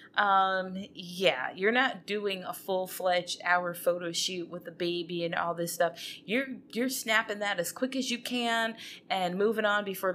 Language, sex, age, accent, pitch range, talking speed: English, female, 20-39, American, 190-275 Hz, 185 wpm